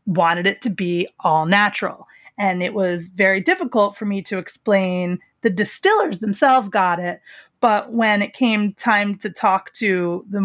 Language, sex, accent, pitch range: English, female, American, 190-245 Hz